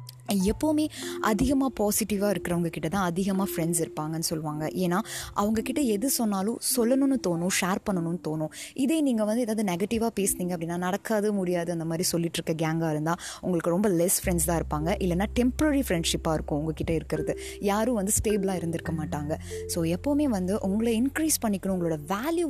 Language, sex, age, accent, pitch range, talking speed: Tamil, female, 20-39, native, 170-235 Hz, 155 wpm